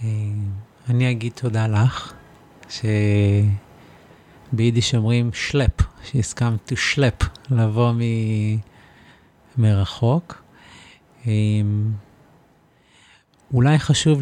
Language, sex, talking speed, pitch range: Hebrew, male, 60 wpm, 120-145 Hz